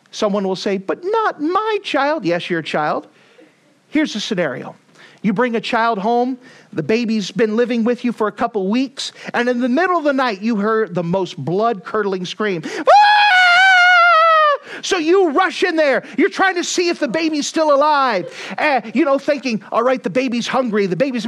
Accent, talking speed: American, 190 wpm